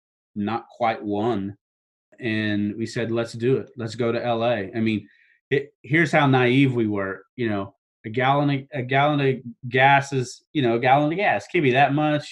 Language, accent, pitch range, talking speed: English, American, 110-135 Hz, 190 wpm